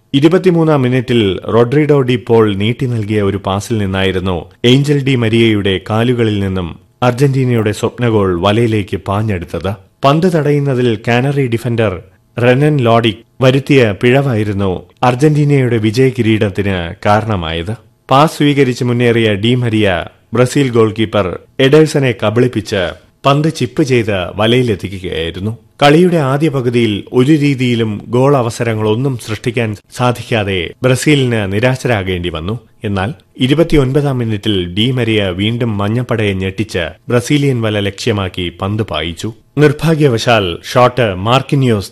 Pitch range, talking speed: 105-130 Hz, 100 wpm